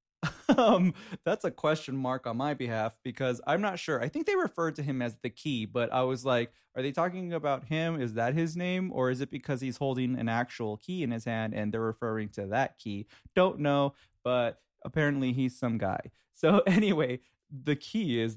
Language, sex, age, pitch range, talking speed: English, male, 20-39, 115-145 Hz, 210 wpm